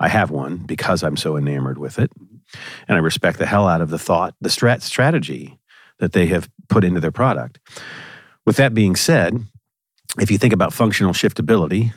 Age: 50-69